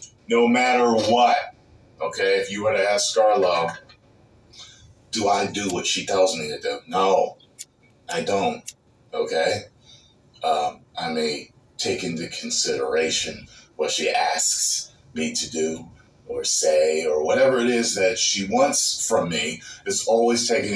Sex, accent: male, American